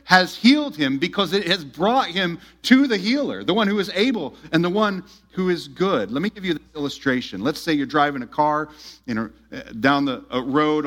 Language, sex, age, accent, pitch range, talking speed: English, male, 40-59, American, 145-195 Hz, 215 wpm